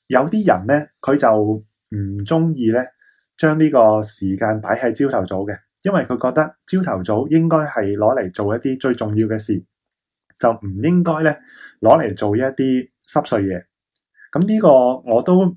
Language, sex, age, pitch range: Chinese, male, 20-39, 105-135 Hz